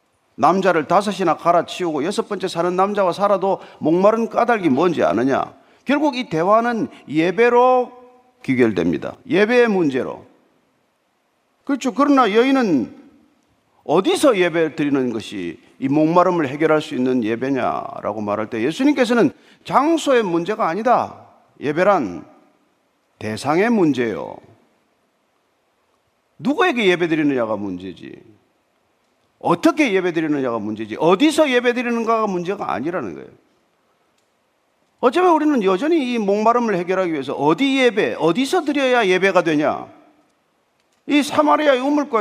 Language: Korean